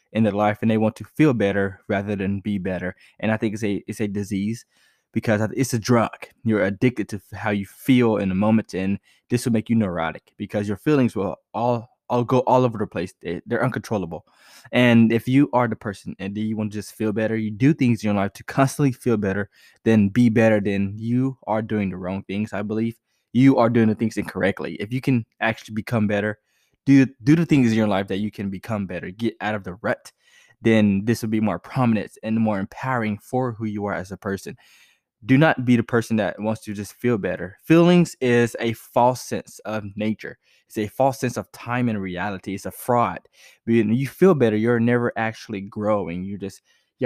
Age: 20-39